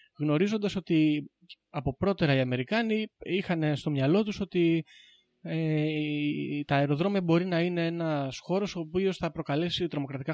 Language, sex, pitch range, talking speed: Greek, male, 130-180 Hz, 140 wpm